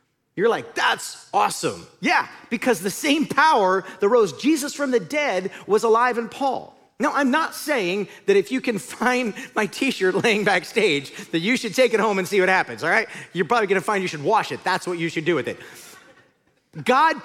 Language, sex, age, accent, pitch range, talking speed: English, male, 40-59, American, 190-270 Hz, 210 wpm